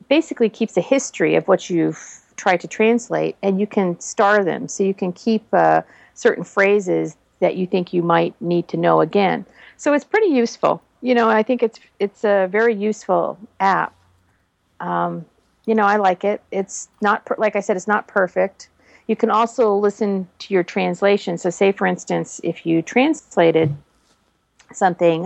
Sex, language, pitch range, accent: female, English, 170-210 Hz, American